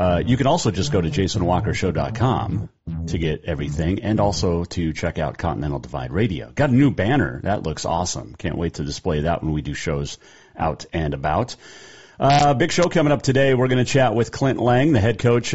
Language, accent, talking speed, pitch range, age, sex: English, American, 210 wpm, 80-115 Hz, 40-59, male